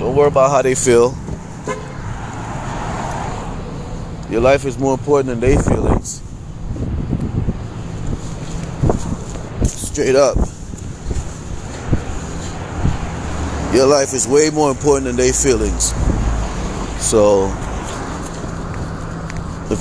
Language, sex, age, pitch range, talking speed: English, male, 20-39, 95-135 Hz, 80 wpm